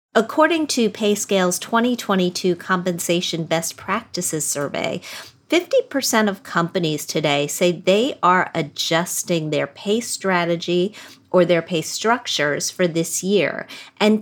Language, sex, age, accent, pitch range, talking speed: English, female, 40-59, American, 170-225 Hz, 115 wpm